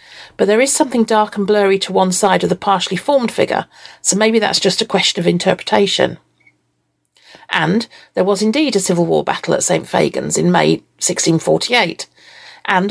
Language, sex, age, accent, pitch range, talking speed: English, female, 40-59, British, 185-235 Hz, 175 wpm